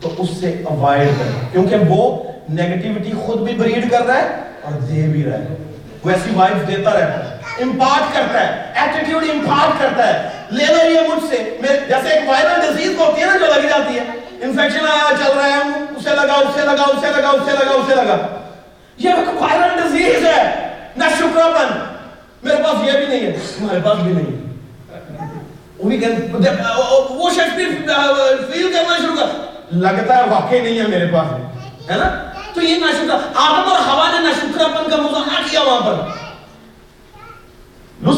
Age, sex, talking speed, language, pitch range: 40-59, male, 125 wpm, Urdu, 215-325 Hz